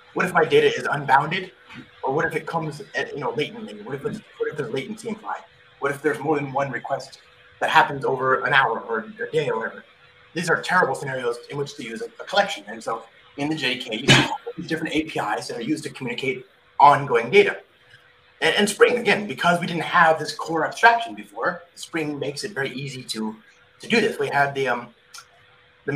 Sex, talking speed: male, 215 wpm